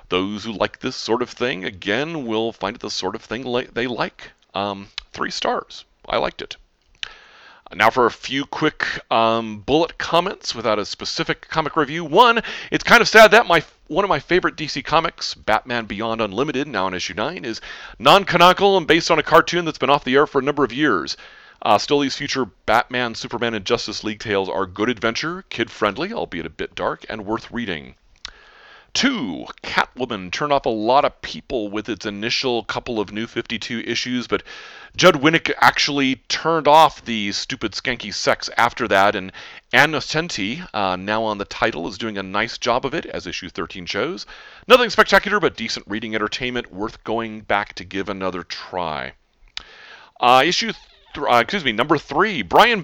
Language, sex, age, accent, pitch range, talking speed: English, male, 40-59, American, 105-155 Hz, 185 wpm